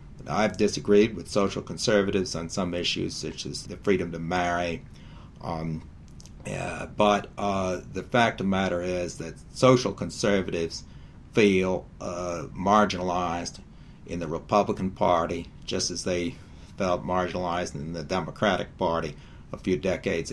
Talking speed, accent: 135 wpm, American